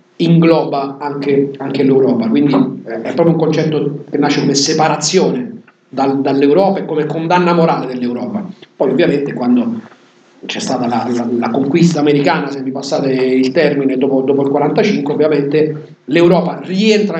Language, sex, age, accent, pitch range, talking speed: Italian, male, 40-59, native, 145-180 Hz, 145 wpm